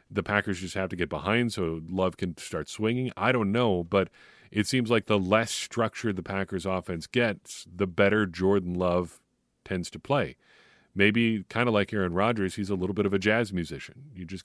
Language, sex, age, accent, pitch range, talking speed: English, male, 40-59, American, 90-110 Hz, 205 wpm